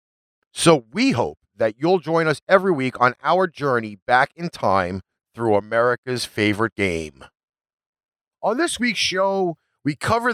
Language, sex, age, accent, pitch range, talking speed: English, male, 40-59, American, 115-185 Hz, 145 wpm